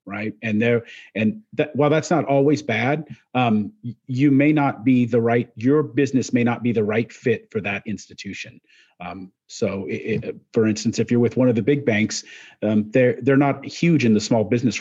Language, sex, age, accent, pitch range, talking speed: English, male, 40-59, American, 110-140 Hz, 205 wpm